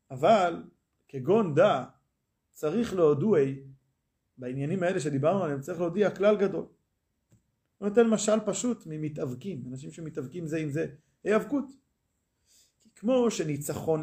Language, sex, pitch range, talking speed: Hebrew, male, 145-210 Hz, 110 wpm